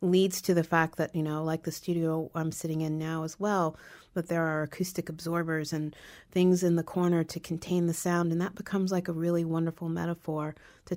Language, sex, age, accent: English, female, 40-59, American